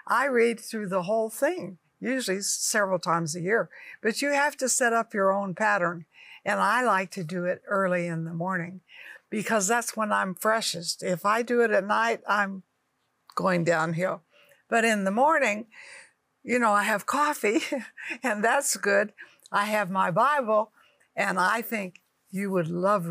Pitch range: 180-235 Hz